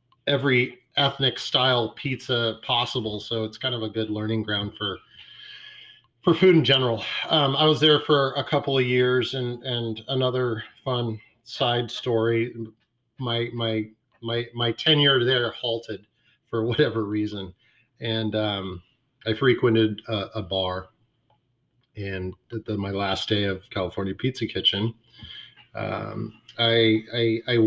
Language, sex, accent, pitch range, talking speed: English, male, American, 100-120 Hz, 140 wpm